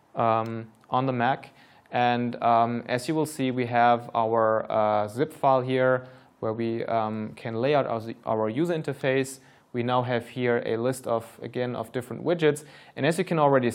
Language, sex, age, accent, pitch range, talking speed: English, male, 20-39, German, 115-135 Hz, 190 wpm